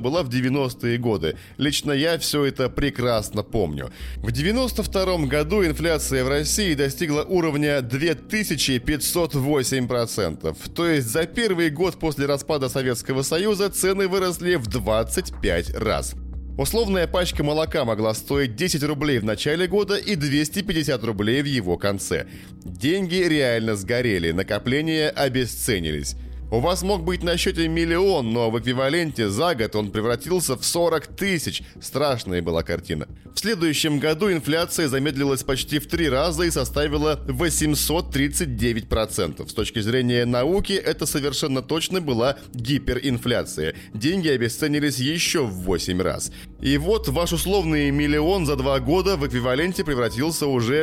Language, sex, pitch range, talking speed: Russian, male, 120-160 Hz, 135 wpm